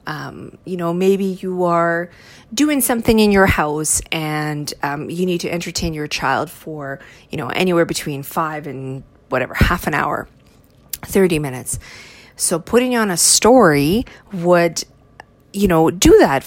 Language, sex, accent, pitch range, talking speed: English, female, American, 150-190 Hz, 155 wpm